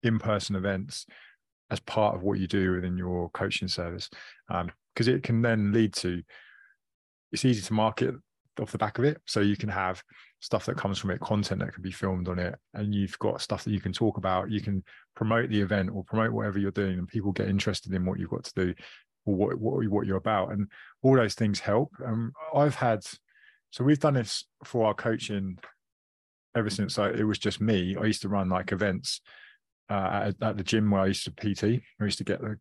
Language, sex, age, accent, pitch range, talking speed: English, male, 20-39, British, 95-110 Hz, 225 wpm